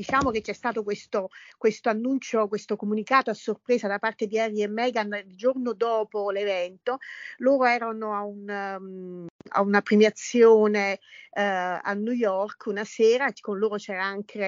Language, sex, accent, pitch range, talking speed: Italian, female, native, 195-230 Hz, 160 wpm